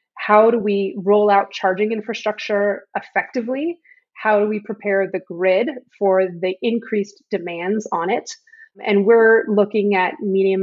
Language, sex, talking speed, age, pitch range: English, female, 140 wpm, 30-49, 190-230 Hz